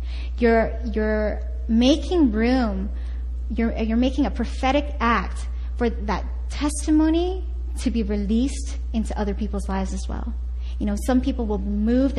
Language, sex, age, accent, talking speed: English, female, 20-39, American, 145 wpm